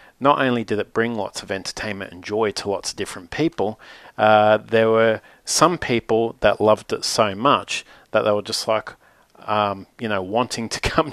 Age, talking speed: 40-59, 195 wpm